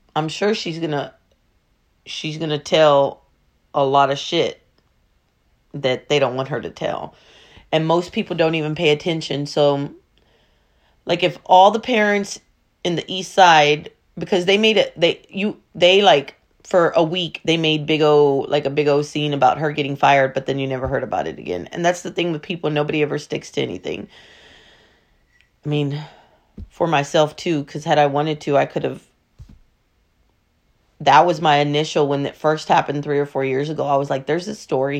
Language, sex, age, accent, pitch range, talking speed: English, female, 30-49, American, 140-165 Hz, 190 wpm